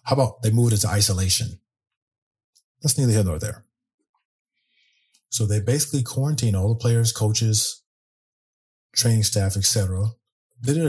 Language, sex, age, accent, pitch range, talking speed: English, male, 30-49, American, 100-115 Hz, 140 wpm